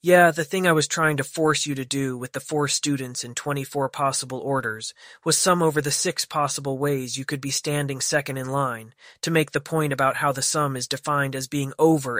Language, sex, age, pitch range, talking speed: English, male, 30-49, 130-155 Hz, 225 wpm